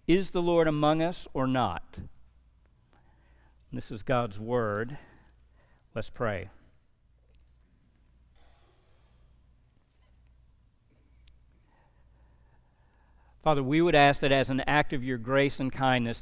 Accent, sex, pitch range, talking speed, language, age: American, male, 100-145 Hz, 95 wpm, English, 50-69